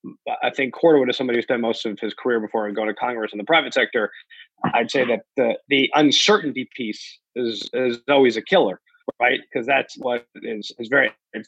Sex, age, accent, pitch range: male, 30-49, American, 115-160 Hz